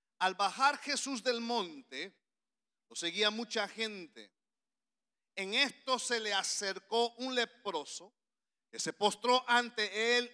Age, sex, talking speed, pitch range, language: 40-59, male, 120 wpm, 195-245 Hz, English